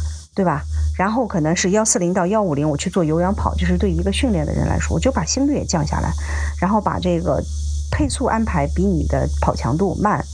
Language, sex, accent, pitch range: Chinese, female, native, 145-205 Hz